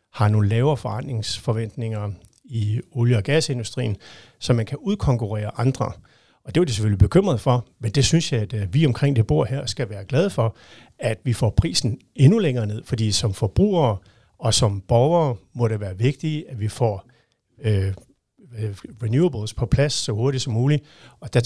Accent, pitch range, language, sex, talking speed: native, 110-130 Hz, Danish, male, 180 wpm